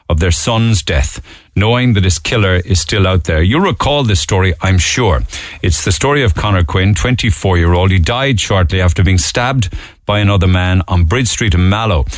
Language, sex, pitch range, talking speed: English, male, 85-110 Hz, 200 wpm